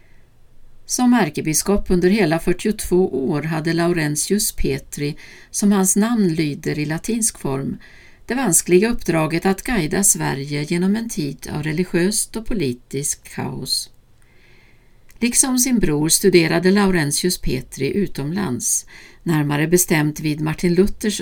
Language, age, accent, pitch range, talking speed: Swedish, 60-79, native, 155-200 Hz, 120 wpm